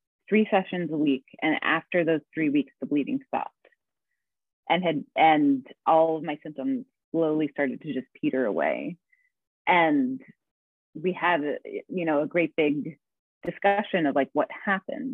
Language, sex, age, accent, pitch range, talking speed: English, female, 30-49, American, 160-265 Hz, 150 wpm